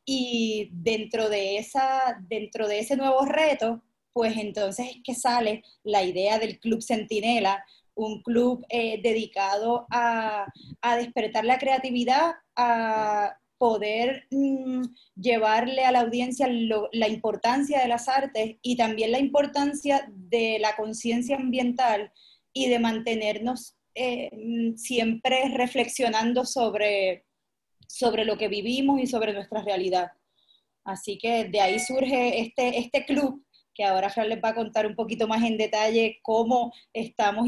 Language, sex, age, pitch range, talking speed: Spanish, female, 20-39, 215-255 Hz, 140 wpm